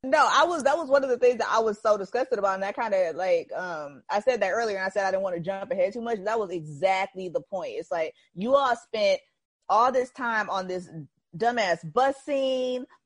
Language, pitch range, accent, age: English, 185-240 Hz, American, 20-39